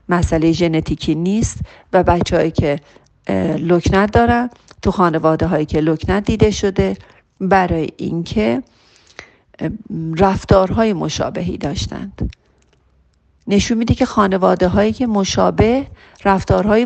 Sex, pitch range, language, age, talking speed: female, 180-250 Hz, Persian, 40-59, 105 wpm